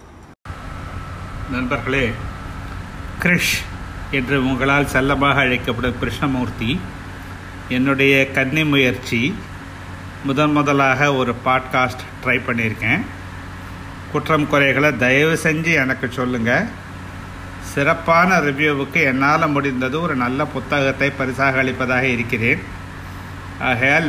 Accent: native